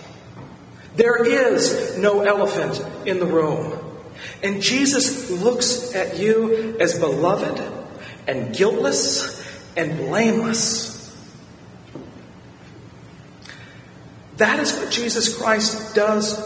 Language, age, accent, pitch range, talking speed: English, 40-59, American, 180-240 Hz, 90 wpm